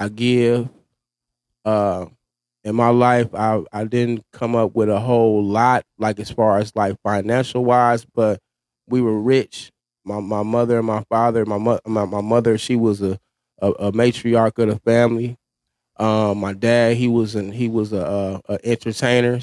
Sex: male